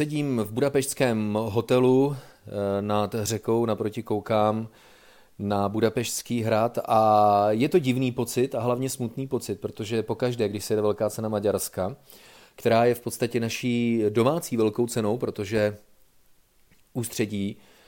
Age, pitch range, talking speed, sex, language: 30-49, 105-120 Hz, 130 wpm, male, Czech